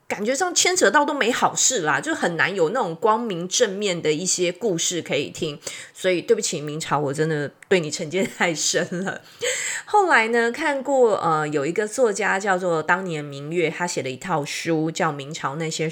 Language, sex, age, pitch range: Chinese, female, 20-39, 160-250 Hz